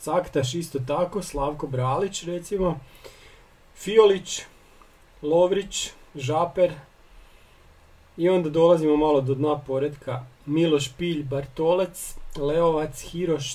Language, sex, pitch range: Croatian, male, 135-170 Hz